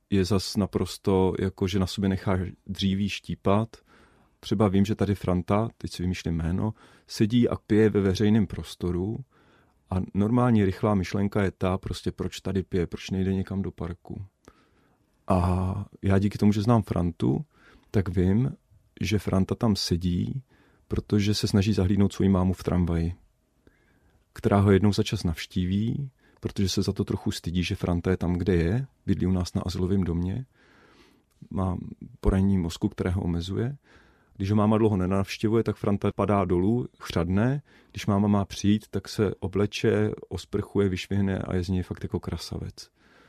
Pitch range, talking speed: 90-105 Hz, 160 wpm